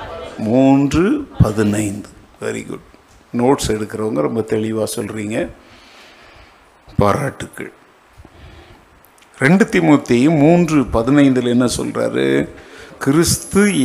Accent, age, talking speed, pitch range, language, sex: Indian, 50-69, 100 wpm, 110-160 Hz, English, male